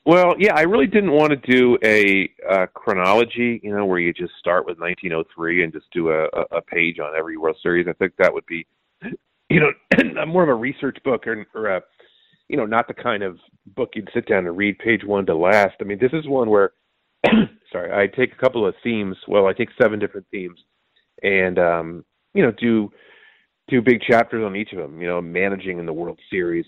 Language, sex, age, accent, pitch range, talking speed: English, male, 30-49, American, 85-130 Hz, 220 wpm